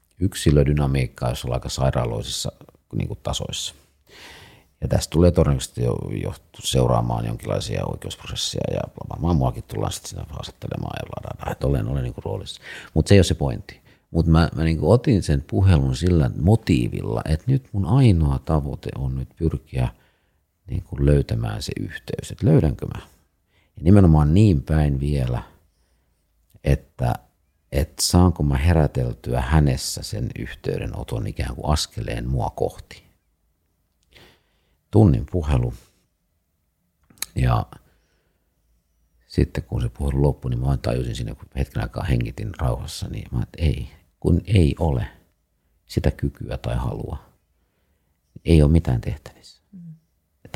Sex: male